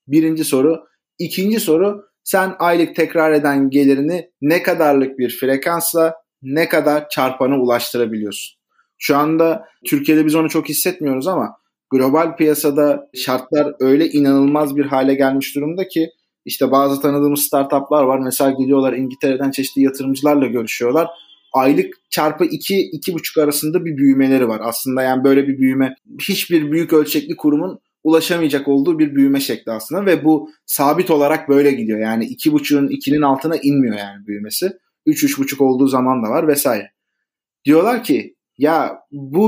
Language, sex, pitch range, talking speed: Turkish, male, 135-185 Hz, 145 wpm